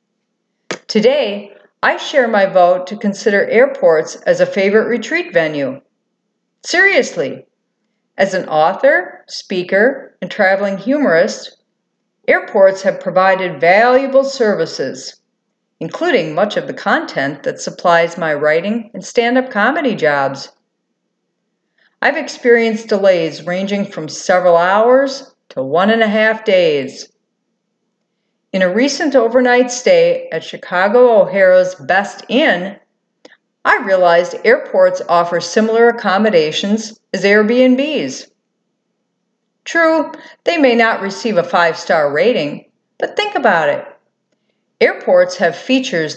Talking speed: 110 wpm